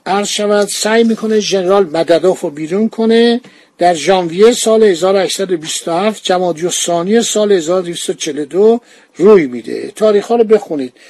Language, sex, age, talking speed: Persian, male, 50-69, 115 wpm